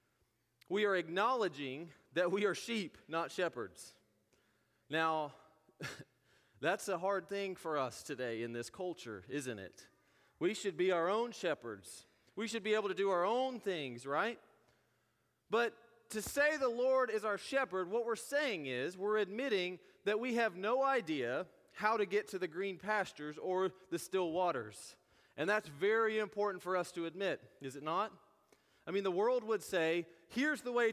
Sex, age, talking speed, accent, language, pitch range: male, 30-49, 170 wpm, American, English, 170-230 Hz